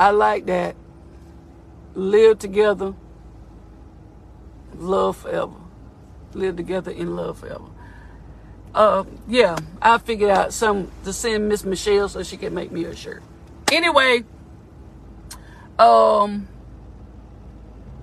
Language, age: English, 50-69